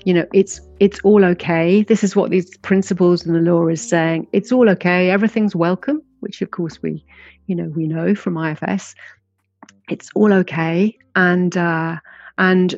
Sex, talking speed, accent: female, 175 wpm, British